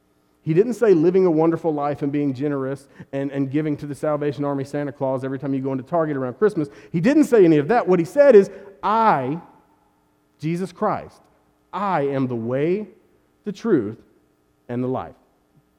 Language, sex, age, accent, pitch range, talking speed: English, male, 40-59, American, 110-160 Hz, 185 wpm